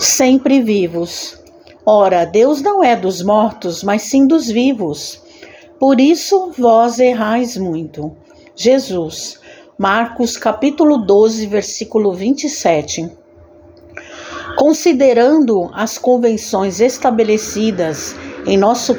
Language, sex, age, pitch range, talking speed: Portuguese, female, 60-79, 200-270 Hz, 90 wpm